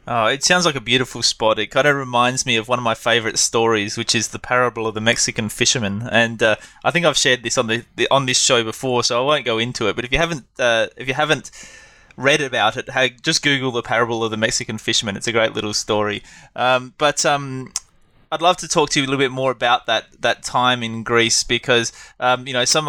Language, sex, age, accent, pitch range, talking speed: English, male, 20-39, Australian, 115-140 Hz, 250 wpm